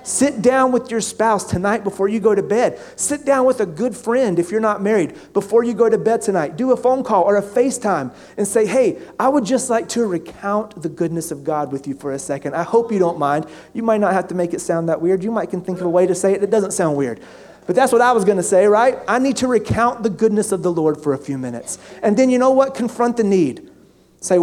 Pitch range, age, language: 170-240 Hz, 30-49, English